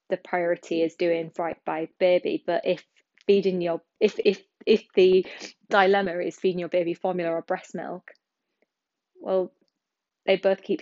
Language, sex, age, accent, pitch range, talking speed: English, female, 20-39, British, 170-190 Hz, 155 wpm